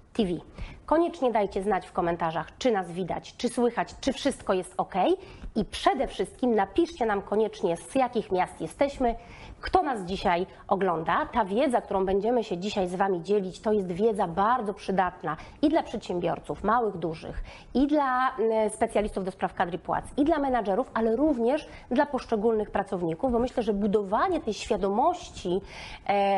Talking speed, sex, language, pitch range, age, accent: 155 wpm, female, Polish, 195-255 Hz, 30-49, native